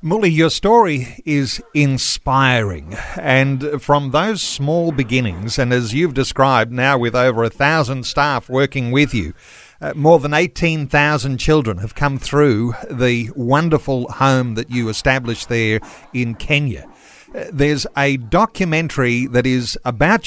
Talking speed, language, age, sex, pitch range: 135 wpm, English, 50-69, male, 125-155 Hz